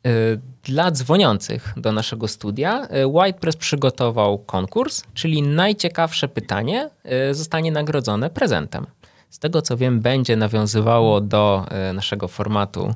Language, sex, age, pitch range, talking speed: Polish, male, 20-39, 105-145 Hz, 110 wpm